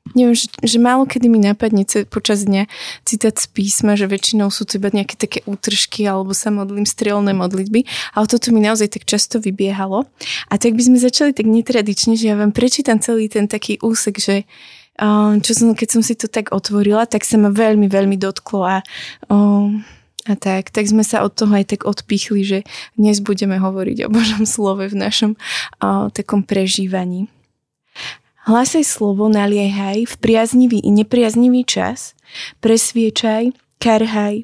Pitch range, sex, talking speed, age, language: 205-235 Hz, female, 165 wpm, 20-39, Slovak